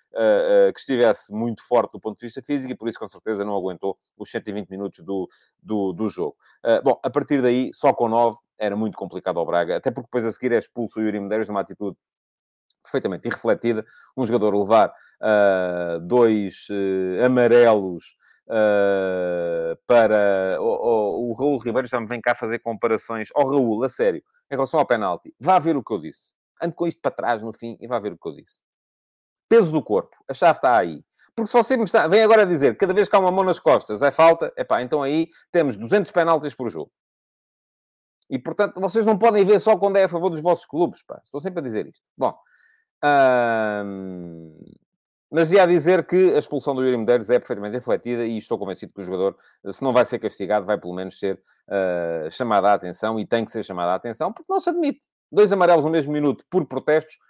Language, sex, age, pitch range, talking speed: Portuguese, male, 30-49, 105-170 Hz, 210 wpm